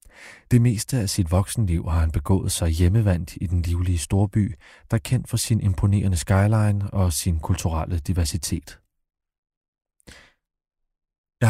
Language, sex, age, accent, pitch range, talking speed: Danish, male, 30-49, native, 85-110 Hz, 135 wpm